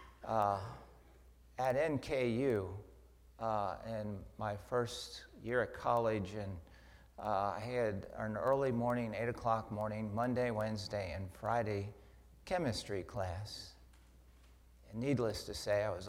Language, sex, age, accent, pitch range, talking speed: English, male, 50-69, American, 75-115 Hz, 120 wpm